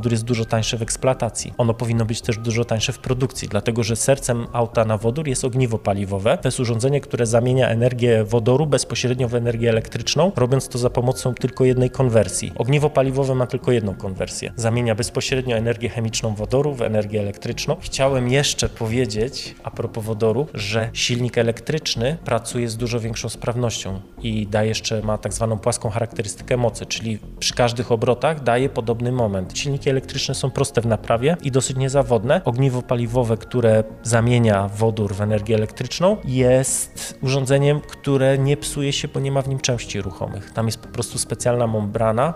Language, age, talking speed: Polish, 20-39, 170 wpm